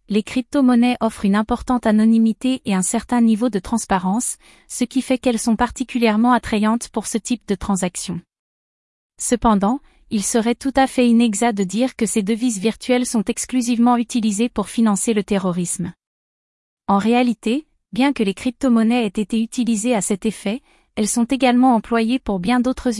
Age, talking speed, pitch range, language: 30-49, 165 wpm, 210-245 Hz, French